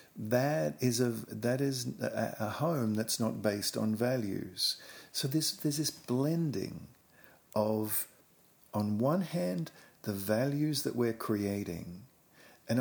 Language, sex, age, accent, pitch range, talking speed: English, male, 50-69, Australian, 105-130 Hz, 125 wpm